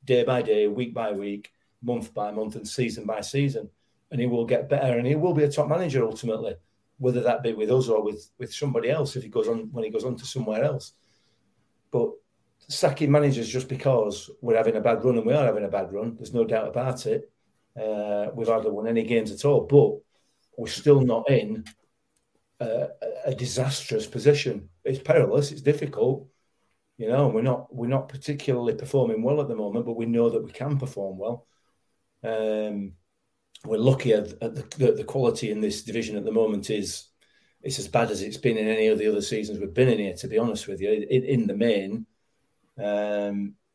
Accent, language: British, English